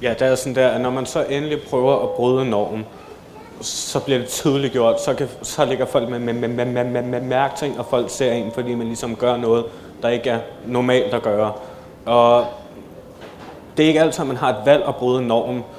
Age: 20-39